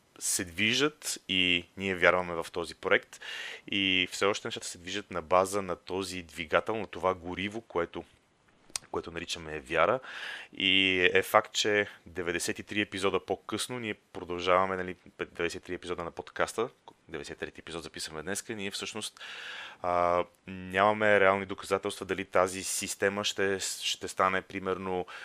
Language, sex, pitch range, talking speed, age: Bulgarian, male, 85-100 Hz, 140 wpm, 30-49